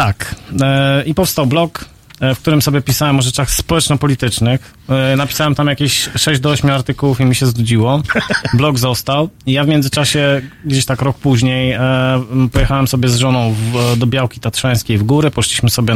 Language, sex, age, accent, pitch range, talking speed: Polish, male, 30-49, native, 125-145 Hz, 165 wpm